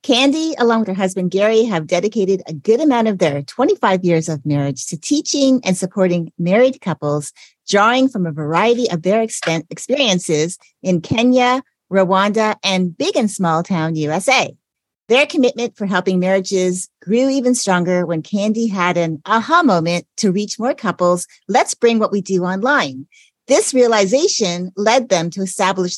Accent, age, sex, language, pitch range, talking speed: American, 40-59, female, English, 170-235 Hz, 160 wpm